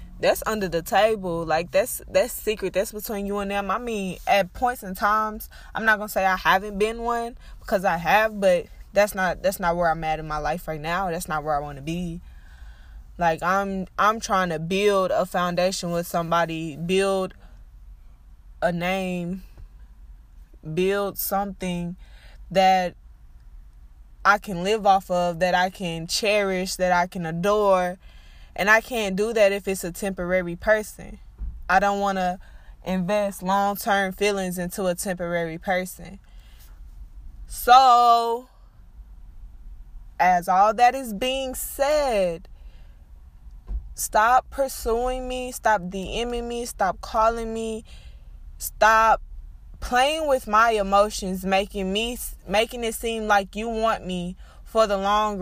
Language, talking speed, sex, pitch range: English, 145 wpm, female, 170-215 Hz